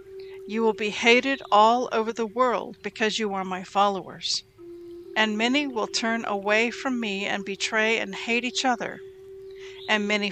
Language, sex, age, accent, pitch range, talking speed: English, female, 50-69, American, 210-330 Hz, 165 wpm